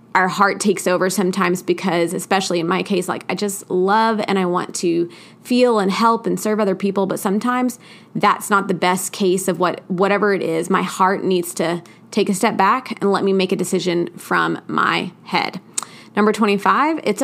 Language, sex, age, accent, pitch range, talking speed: English, female, 20-39, American, 185-225 Hz, 200 wpm